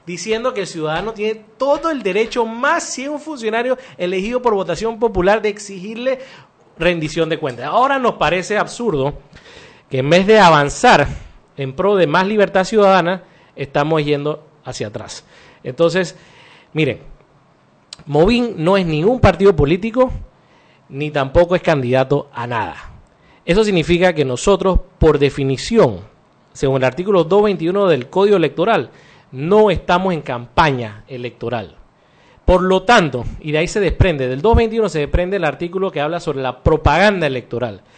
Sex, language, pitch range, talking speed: male, Spanish, 150-205 Hz, 145 wpm